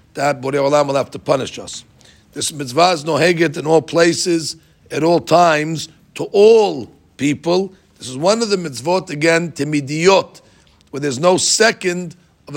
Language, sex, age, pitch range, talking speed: English, male, 50-69, 145-175 Hz, 165 wpm